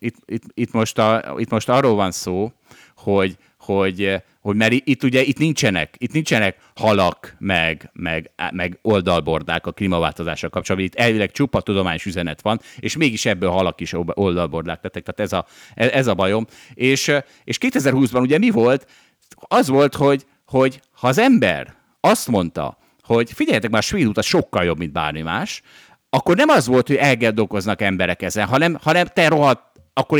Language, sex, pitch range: Hungarian, male, 90-130 Hz